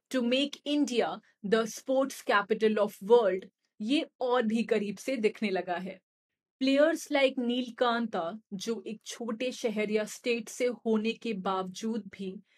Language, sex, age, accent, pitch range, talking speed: Hindi, female, 30-49, native, 215-255 Hz, 145 wpm